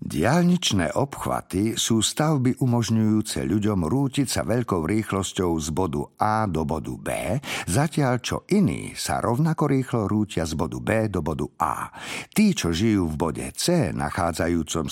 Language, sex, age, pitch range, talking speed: Slovak, male, 50-69, 85-130 Hz, 145 wpm